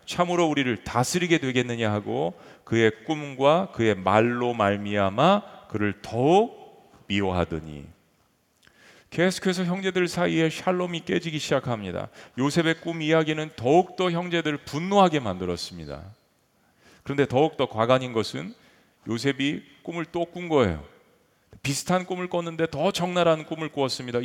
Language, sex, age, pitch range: Korean, male, 40-59, 115-170 Hz